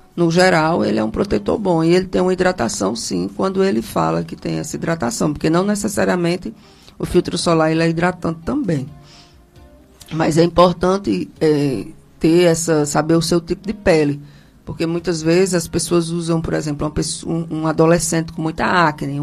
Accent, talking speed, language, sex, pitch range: Brazilian, 175 wpm, Portuguese, female, 150-170 Hz